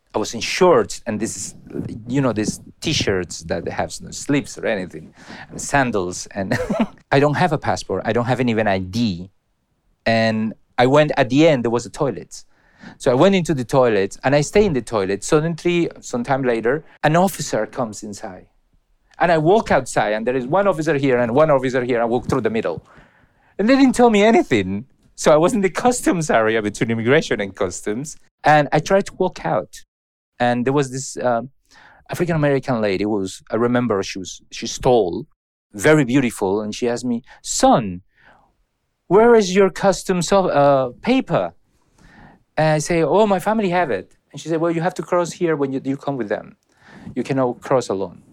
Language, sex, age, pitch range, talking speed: English, male, 40-59, 120-170 Hz, 190 wpm